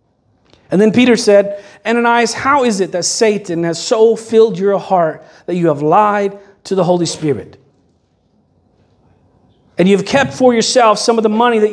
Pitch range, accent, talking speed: 190-250 Hz, American, 170 wpm